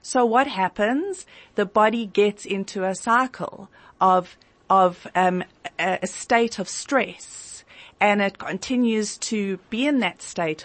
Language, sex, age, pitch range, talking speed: English, female, 40-59, 185-230 Hz, 135 wpm